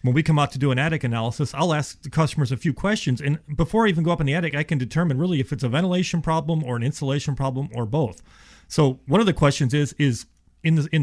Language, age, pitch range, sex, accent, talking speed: English, 30-49, 125-155 Hz, male, American, 260 wpm